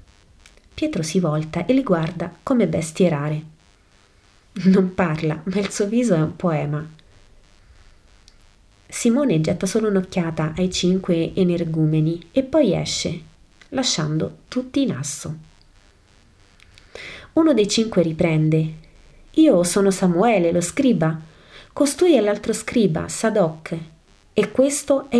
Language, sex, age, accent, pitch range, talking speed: Italian, female, 30-49, native, 155-220 Hz, 115 wpm